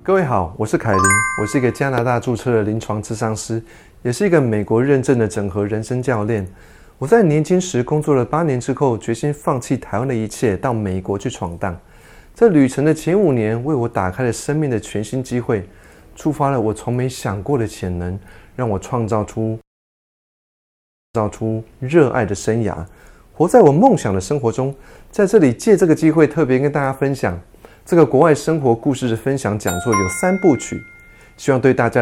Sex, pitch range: male, 105-140 Hz